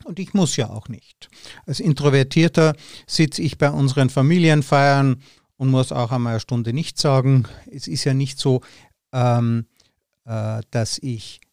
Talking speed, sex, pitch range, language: 145 wpm, male, 120-150 Hz, German